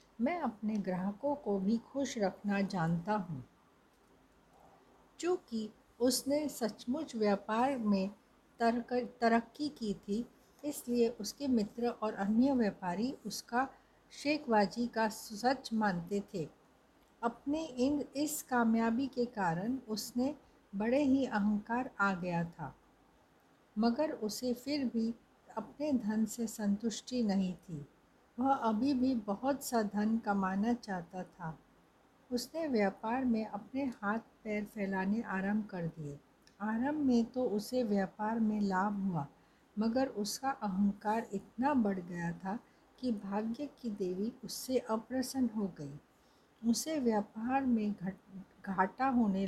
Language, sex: Hindi, female